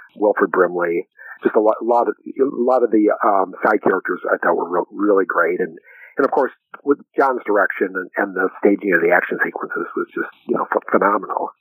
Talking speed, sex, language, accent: 215 wpm, male, English, American